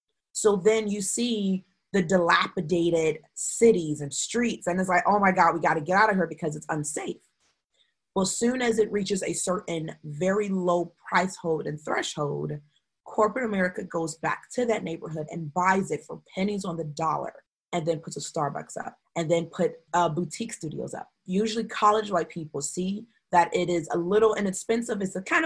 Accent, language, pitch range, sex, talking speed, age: American, English, 165-205 Hz, female, 190 wpm, 30-49